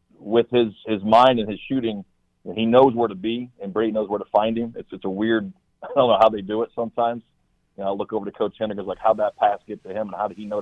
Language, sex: English, male